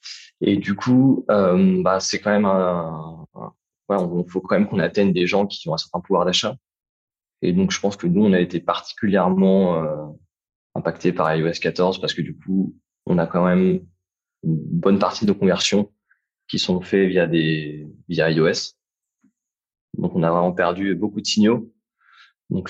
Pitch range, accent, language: 80-100 Hz, French, French